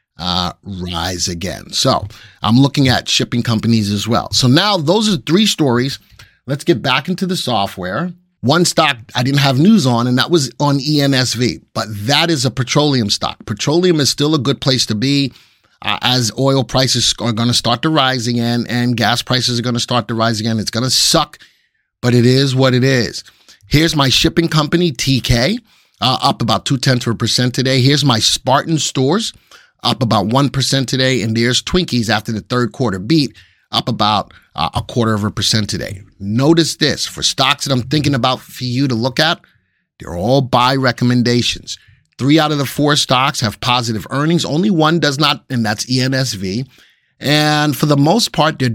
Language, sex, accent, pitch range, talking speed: English, male, American, 115-150 Hz, 195 wpm